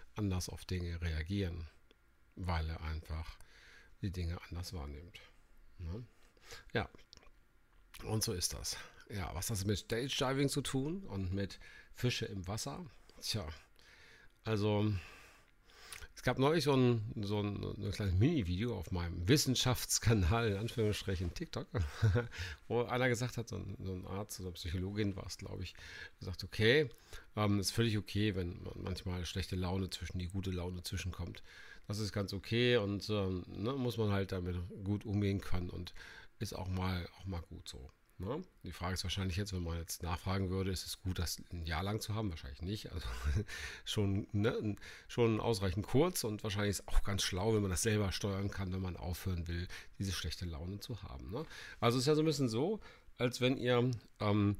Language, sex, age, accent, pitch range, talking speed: German, male, 50-69, German, 90-115 Hz, 180 wpm